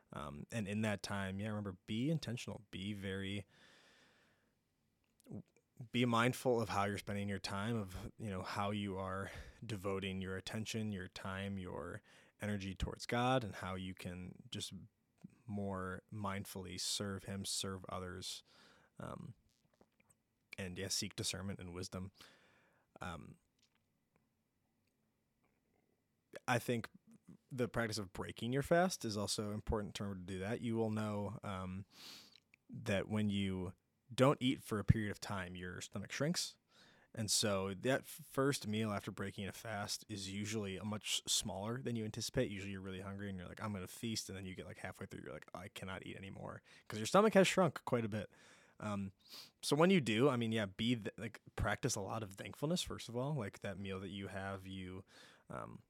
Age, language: 20-39, English